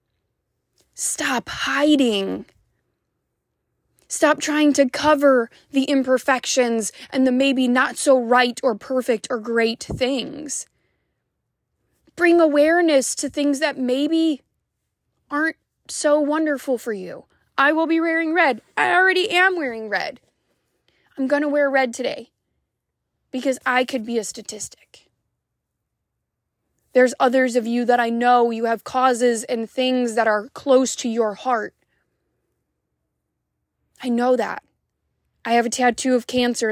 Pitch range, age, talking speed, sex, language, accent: 220-275 Hz, 20-39, 130 wpm, female, English, American